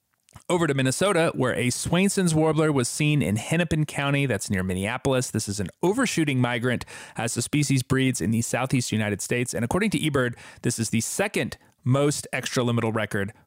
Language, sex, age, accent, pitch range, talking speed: English, male, 30-49, American, 110-150 Hz, 180 wpm